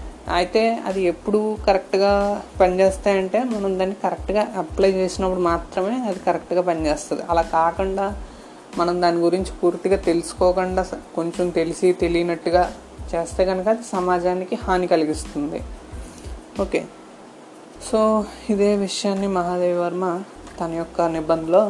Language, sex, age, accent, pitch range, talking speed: Telugu, female, 20-39, native, 165-190 Hz, 110 wpm